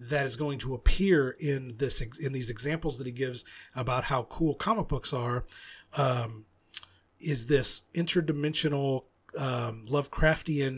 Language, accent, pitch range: English, American, 120-150 Hz